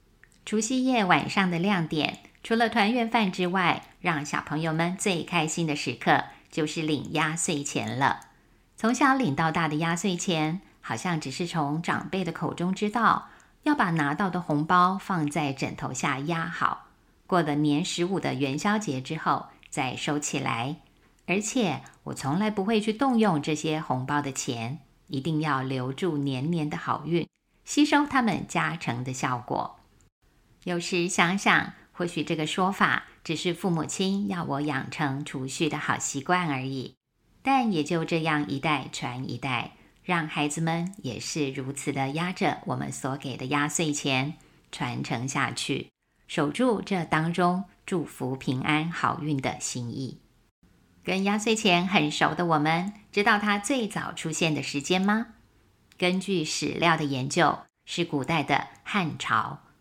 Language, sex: Chinese, female